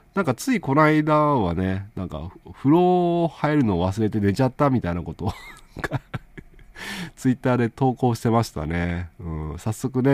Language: Japanese